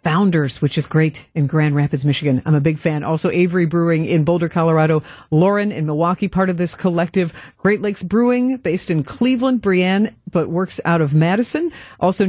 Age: 50-69